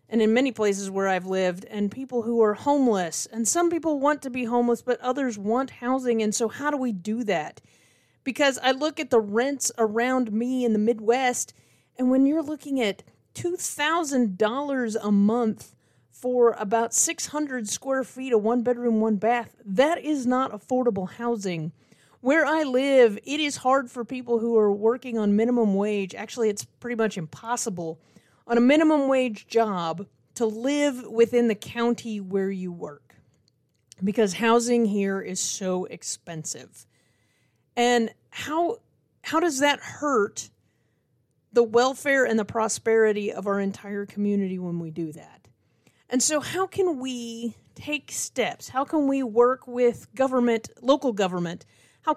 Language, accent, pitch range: English, American, 200-260 Hz